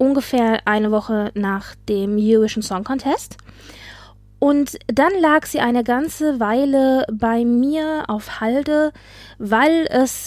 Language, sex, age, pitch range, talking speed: German, female, 20-39, 220-265 Hz, 125 wpm